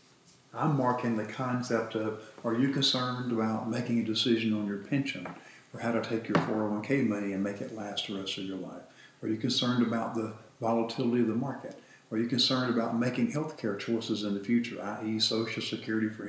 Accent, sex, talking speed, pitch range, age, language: American, male, 205 wpm, 110-130 Hz, 50-69, English